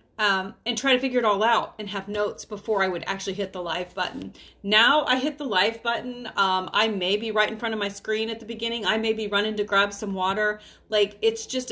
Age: 30-49